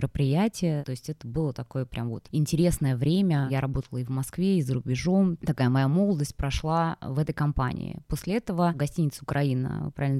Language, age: Russian, 20-39